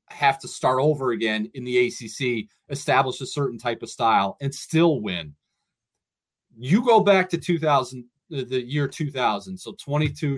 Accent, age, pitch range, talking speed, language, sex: American, 30-49, 120-160 Hz, 155 wpm, English, male